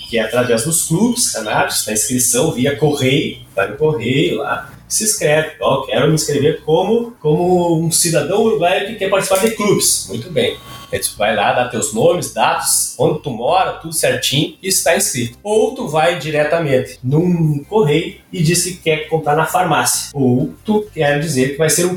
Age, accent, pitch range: 20-39, Brazilian, 145-185 Hz